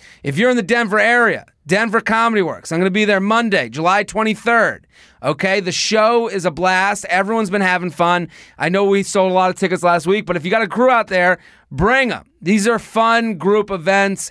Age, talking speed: 30-49, 215 wpm